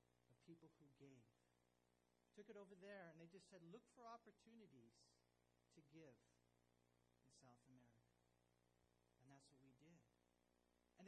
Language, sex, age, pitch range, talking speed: English, male, 40-59, 135-200 Hz, 135 wpm